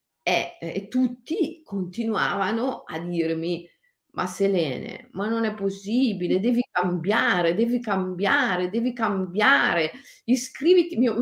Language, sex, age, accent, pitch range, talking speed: Italian, female, 40-59, native, 180-250 Hz, 105 wpm